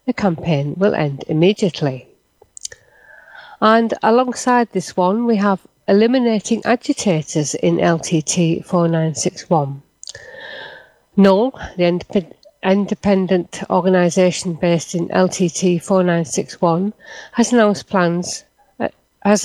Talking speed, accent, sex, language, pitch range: 110 wpm, British, female, English, 175-240 Hz